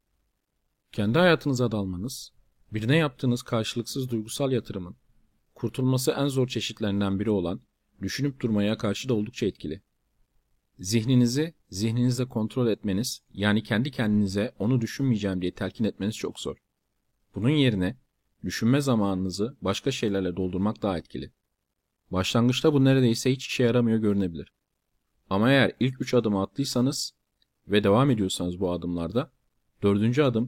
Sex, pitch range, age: male, 100-125 Hz, 40-59